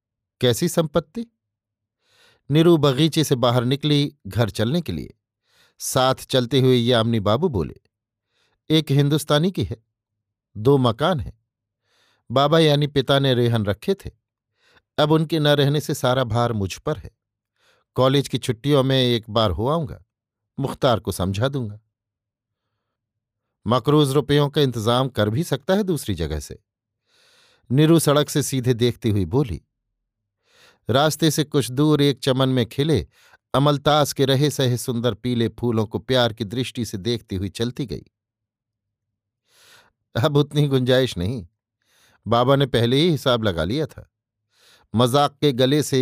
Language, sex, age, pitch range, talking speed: Hindi, male, 50-69, 110-145 Hz, 145 wpm